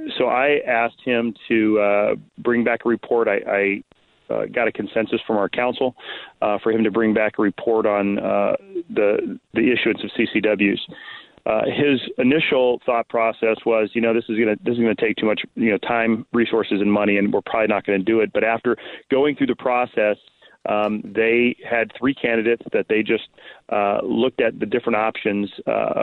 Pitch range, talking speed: 105-120 Hz, 205 wpm